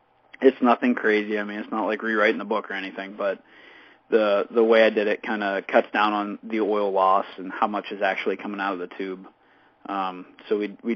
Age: 20-39